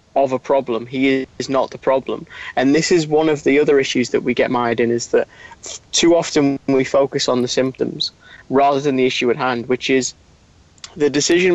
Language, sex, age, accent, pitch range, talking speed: English, male, 30-49, British, 130-165 Hz, 210 wpm